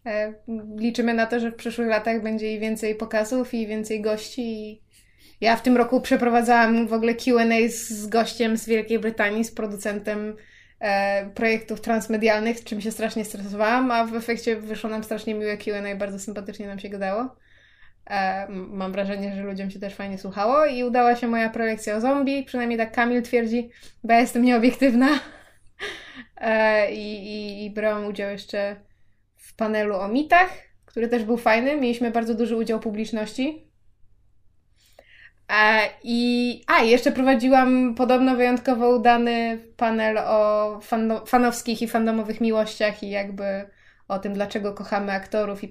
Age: 20-39